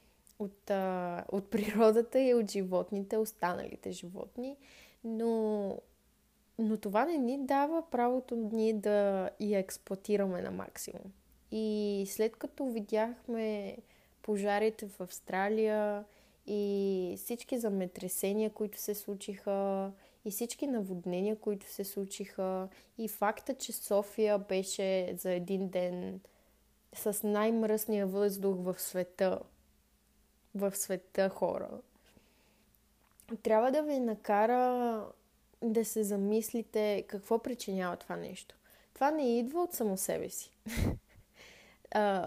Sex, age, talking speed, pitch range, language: female, 20-39, 110 wpm, 195-235 Hz, Bulgarian